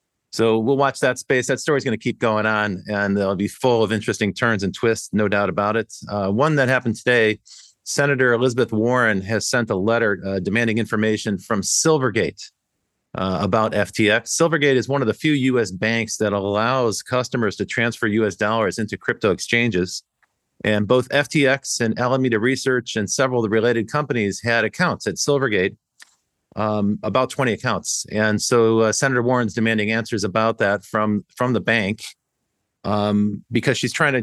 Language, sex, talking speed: English, male, 175 wpm